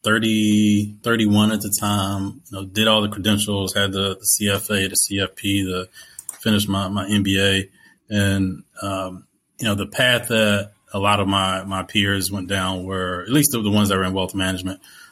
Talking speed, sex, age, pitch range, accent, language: 185 wpm, male, 20-39, 95-105 Hz, American, English